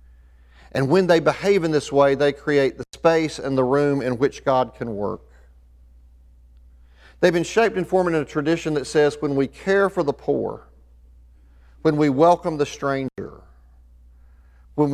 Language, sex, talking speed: English, male, 165 wpm